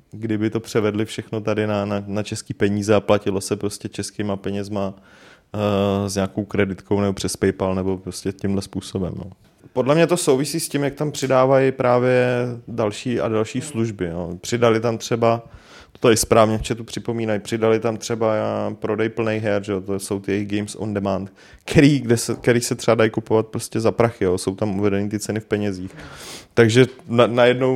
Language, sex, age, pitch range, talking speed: Czech, male, 30-49, 100-125 Hz, 180 wpm